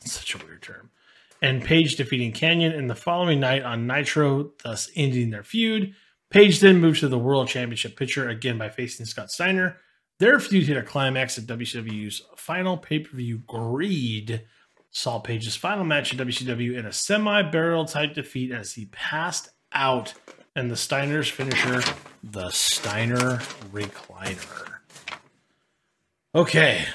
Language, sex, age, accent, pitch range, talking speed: English, male, 30-49, American, 120-160 Hz, 145 wpm